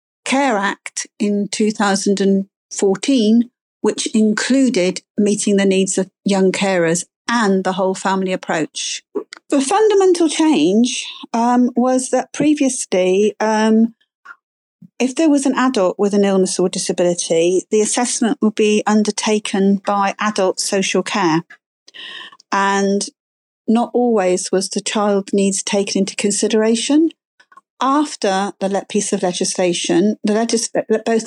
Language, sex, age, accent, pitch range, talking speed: English, female, 50-69, British, 195-240 Hz, 120 wpm